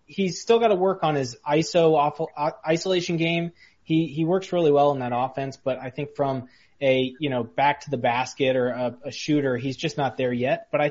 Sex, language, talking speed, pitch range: male, English, 220 wpm, 130-165 Hz